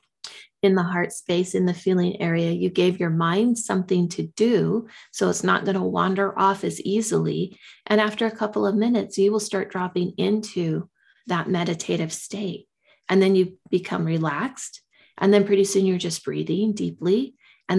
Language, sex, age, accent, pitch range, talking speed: English, female, 30-49, American, 175-200 Hz, 175 wpm